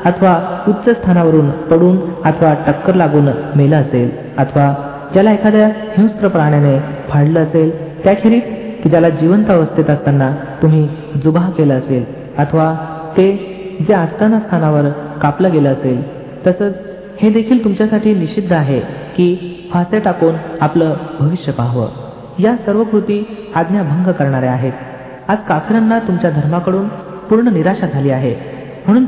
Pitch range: 150-200 Hz